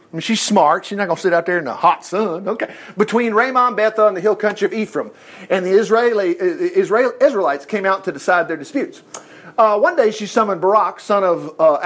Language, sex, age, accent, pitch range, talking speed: English, male, 50-69, American, 180-235 Hz, 230 wpm